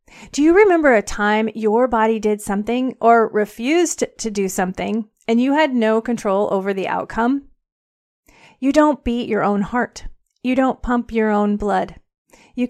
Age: 30-49